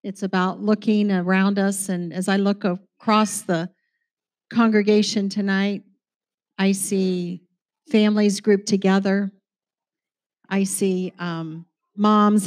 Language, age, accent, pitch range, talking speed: English, 50-69, American, 190-215 Hz, 105 wpm